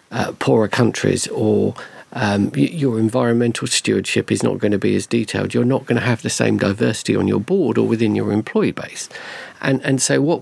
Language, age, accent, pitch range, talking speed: English, 50-69, British, 105-125 Hz, 200 wpm